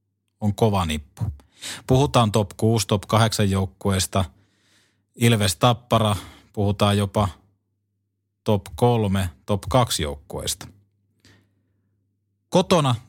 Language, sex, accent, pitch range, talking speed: Finnish, male, native, 100-120 Hz, 85 wpm